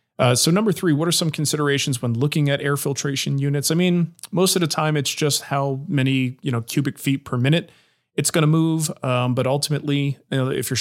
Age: 30-49